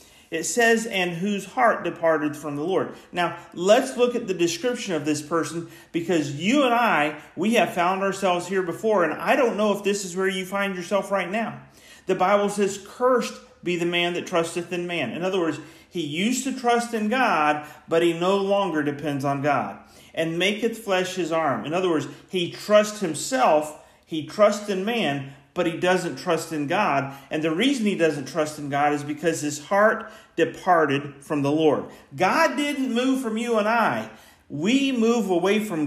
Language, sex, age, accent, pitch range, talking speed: English, male, 40-59, American, 160-220 Hz, 195 wpm